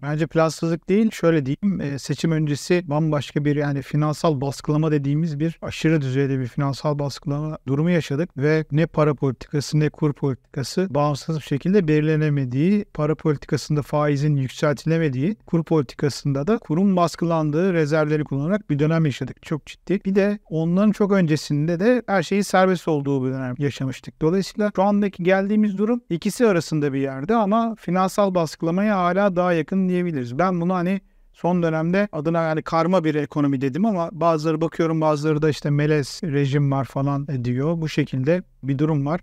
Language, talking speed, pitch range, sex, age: Turkish, 160 wpm, 145-185 Hz, male, 40-59